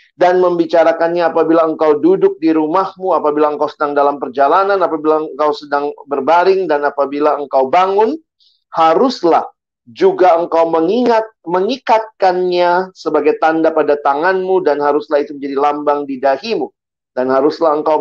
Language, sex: Indonesian, male